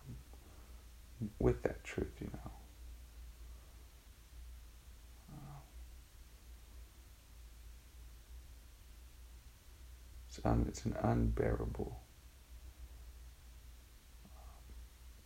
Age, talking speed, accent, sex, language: 50-69, 45 wpm, American, male, English